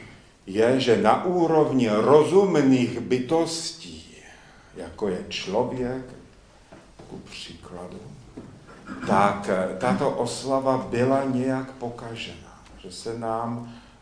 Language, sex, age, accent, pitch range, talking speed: Czech, male, 50-69, native, 105-130 Hz, 85 wpm